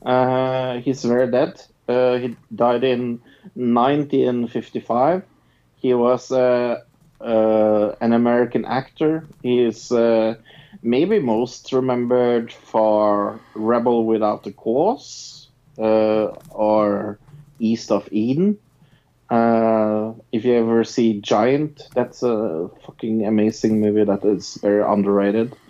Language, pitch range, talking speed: English, 105-130 Hz, 110 wpm